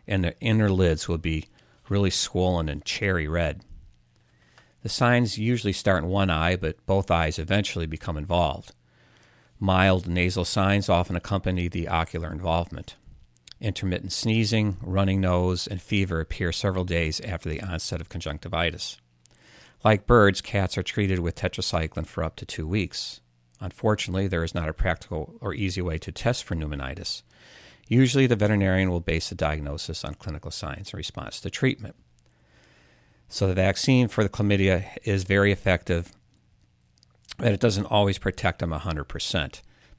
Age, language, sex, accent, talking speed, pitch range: 50-69, English, male, American, 150 wpm, 80-100 Hz